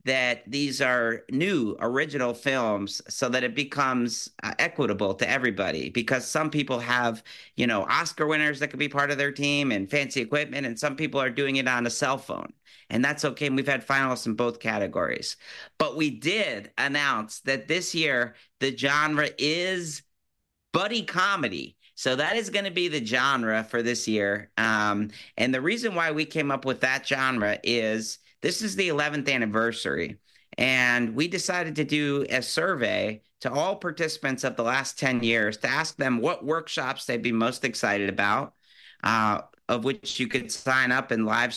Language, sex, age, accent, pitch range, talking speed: English, male, 50-69, American, 115-150 Hz, 180 wpm